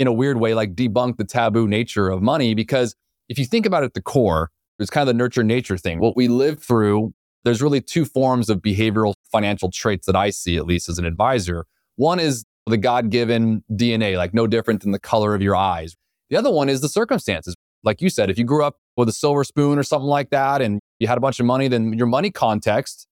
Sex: male